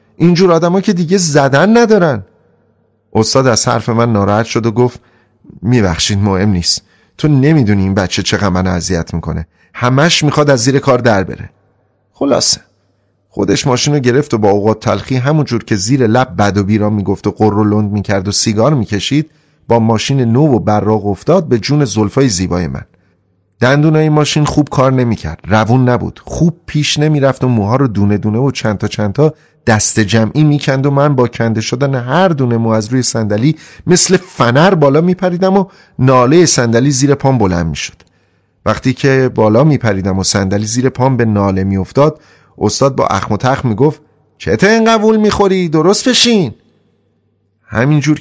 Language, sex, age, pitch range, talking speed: Persian, male, 30-49, 105-145 Hz, 165 wpm